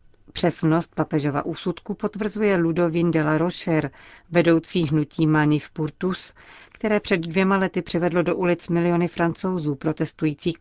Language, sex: Czech, female